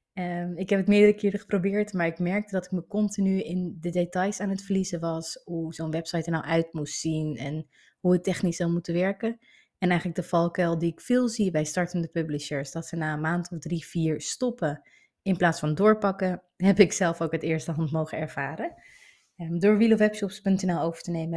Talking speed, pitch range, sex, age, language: 205 wpm, 165-200 Hz, female, 30-49, Dutch